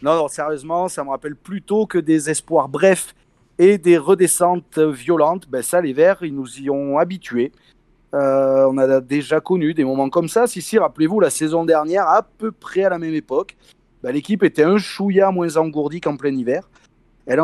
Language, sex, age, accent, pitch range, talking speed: French, male, 30-49, French, 150-190 Hz, 195 wpm